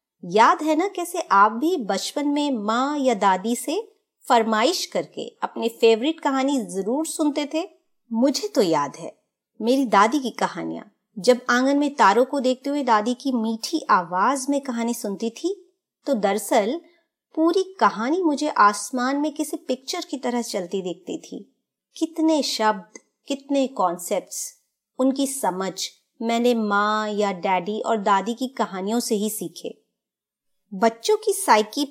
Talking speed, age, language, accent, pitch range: 145 wpm, 30-49, Hindi, native, 215-295 Hz